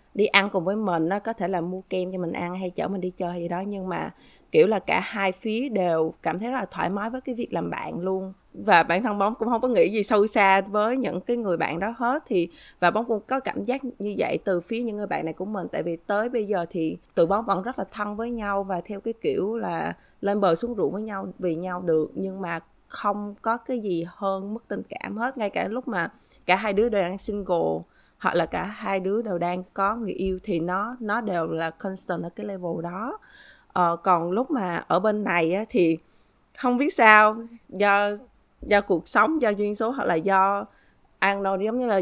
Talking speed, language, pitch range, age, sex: 245 wpm, Vietnamese, 180-220 Hz, 20-39, female